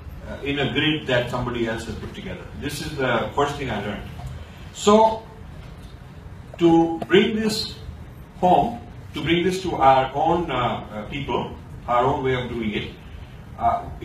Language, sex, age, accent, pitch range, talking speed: English, male, 50-69, Indian, 105-155 Hz, 160 wpm